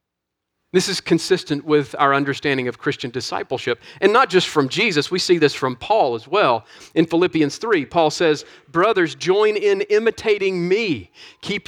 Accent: American